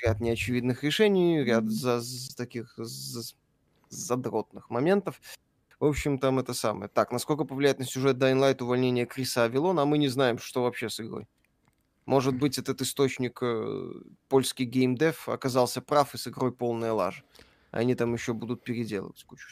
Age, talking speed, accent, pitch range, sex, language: 20-39, 155 wpm, native, 120-145 Hz, male, Russian